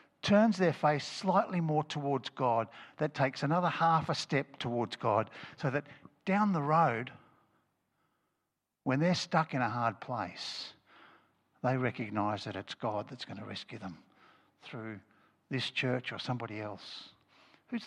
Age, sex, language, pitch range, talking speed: 60-79, male, English, 115-145 Hz, 150 wpm